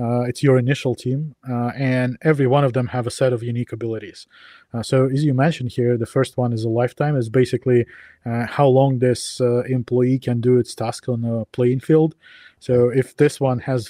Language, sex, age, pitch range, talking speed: English, male, 20-39, 120-135 Hz, 215 wpm